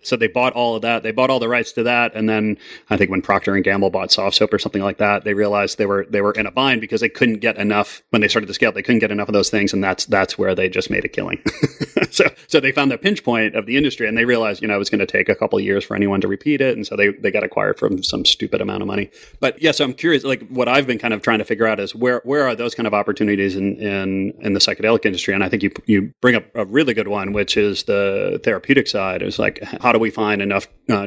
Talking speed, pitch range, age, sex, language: 305 wpm, 100-125 Hz, 30-49, male, English